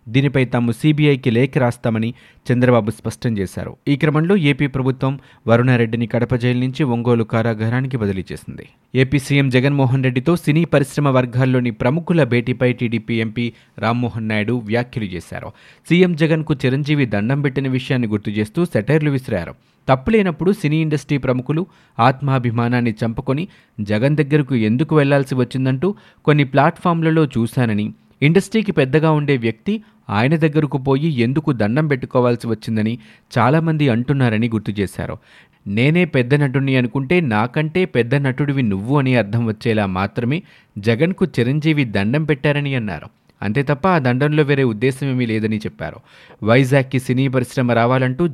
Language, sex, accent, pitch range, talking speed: Telugu, male, native, 120-150 Hz, 130 wpm